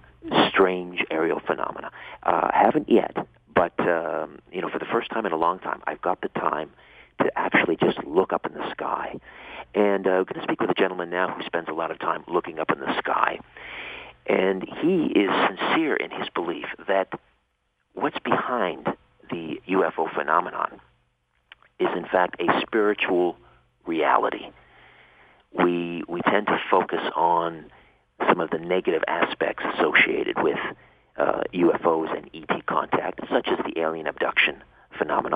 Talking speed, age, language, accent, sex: 165 wpm, 50-69, English, American, male